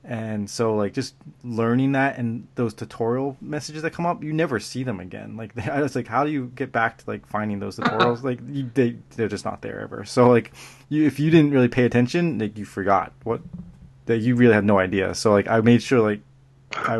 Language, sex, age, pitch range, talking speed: English, male, 20-39, 105-135 Hz, 235 wpm